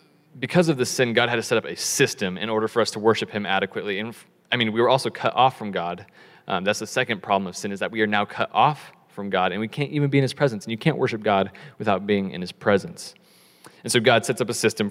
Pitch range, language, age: 105-135 Hz, English, 20-39